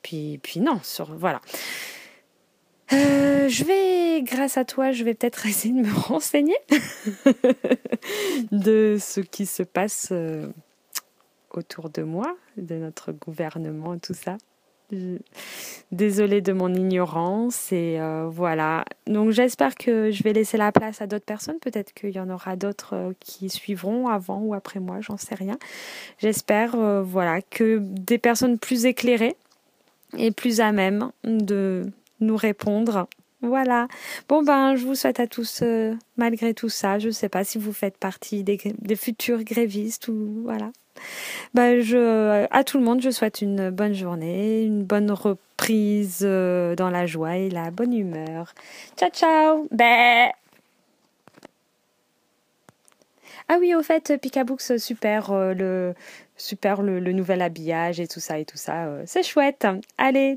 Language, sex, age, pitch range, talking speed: French, female, 20-39, 190-245 Hz, 150 wpm